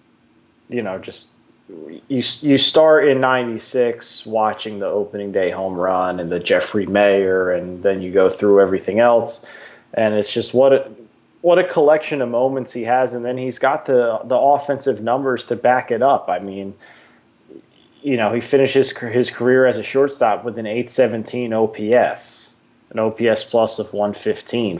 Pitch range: 105-130 Hz